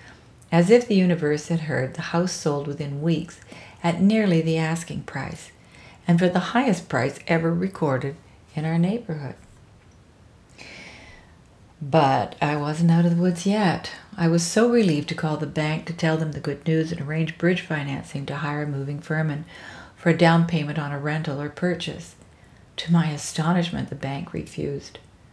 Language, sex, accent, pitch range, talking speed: English, female, American, 140-170 Hz, 170 wpm